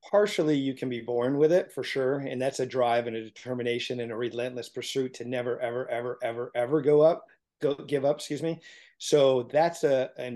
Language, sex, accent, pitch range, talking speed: English, male, American, 120-145 Hz, 215 wpm